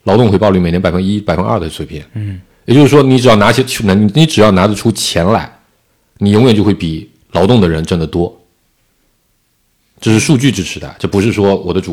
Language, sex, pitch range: Chinese, male, 90-115 Hz